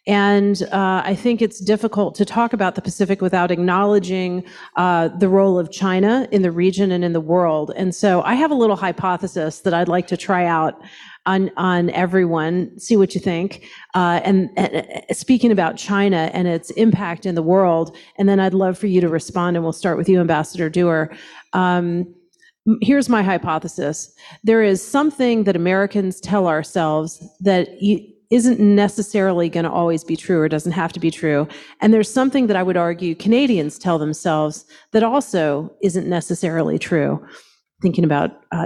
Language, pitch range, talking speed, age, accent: English, 175-215 Hz, 180 wpm, 40-59, American